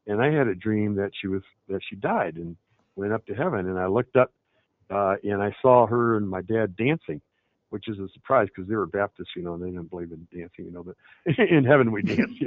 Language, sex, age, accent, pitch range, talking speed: English, male, 60-79, American, 95-120 Hz, 255 wpm